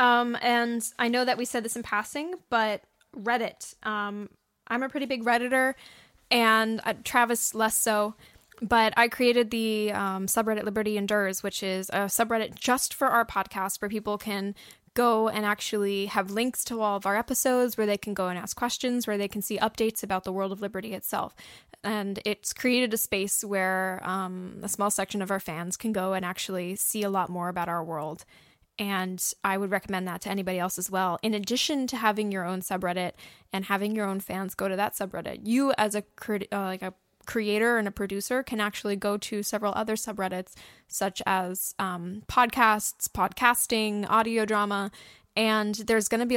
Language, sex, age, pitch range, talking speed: English, female, 10-29, 195-230 Hz, 195 wpm